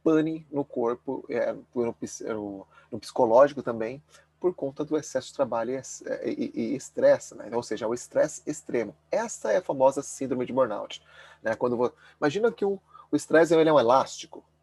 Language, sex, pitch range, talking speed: Portuguese, male, 120-160 Hz, 160 wpm